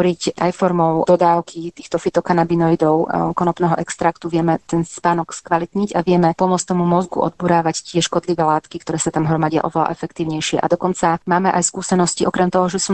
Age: 30-49